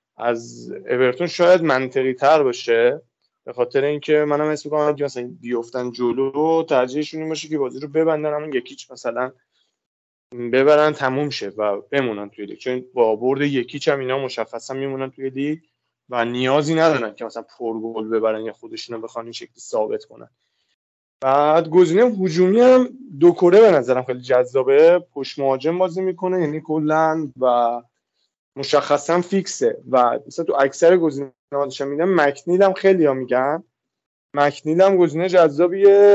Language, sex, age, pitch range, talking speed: Persian, male, 20-39, 125-175 Hz, 150 wpm